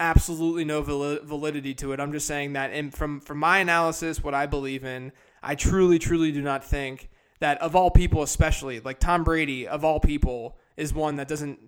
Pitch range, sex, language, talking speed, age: 135-165 Hz, male, English, 200 wpm, 20-39